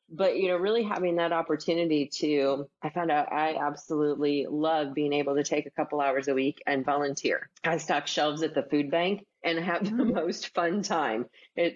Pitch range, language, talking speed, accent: 145-175 Hz, English, 200 wpm, American